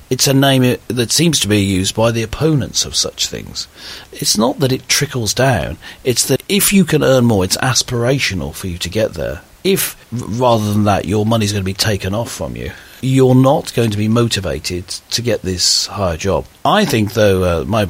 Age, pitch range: 40-59, 90-125 Hz